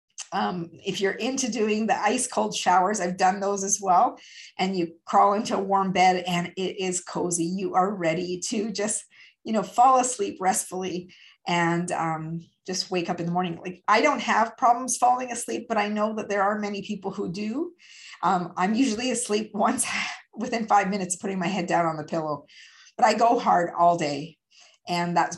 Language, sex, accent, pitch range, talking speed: English, female, American, 180-220 Hz, 195 wpm